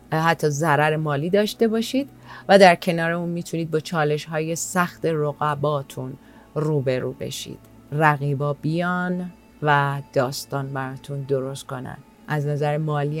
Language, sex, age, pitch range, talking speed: Persian, female, 30-49, 145-185 Hz, 125 wpm